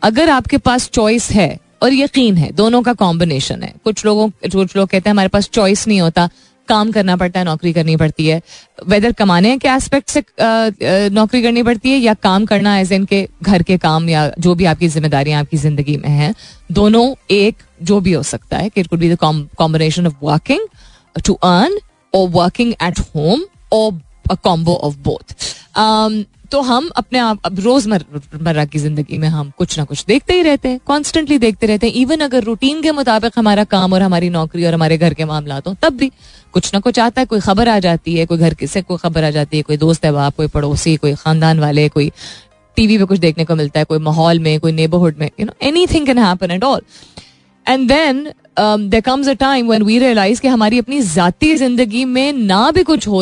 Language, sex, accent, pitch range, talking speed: Hindi, female, native, 160-235 Hz, 210 wpm